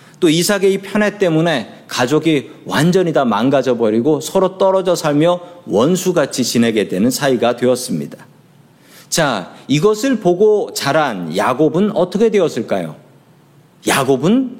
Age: 40-59